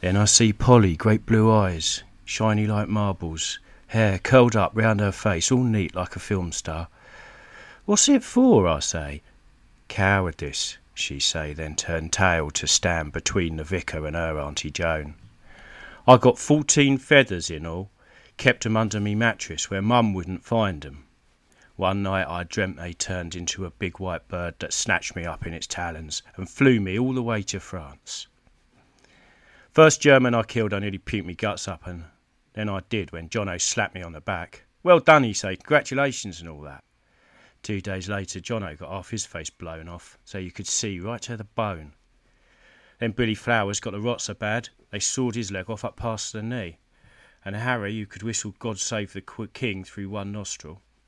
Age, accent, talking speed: 40-59, British, 190 wpm